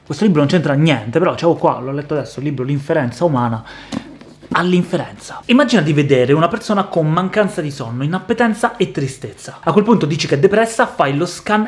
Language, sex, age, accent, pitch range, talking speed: Italian, male, 30-49, native, 145-185 Hz, 200 wpm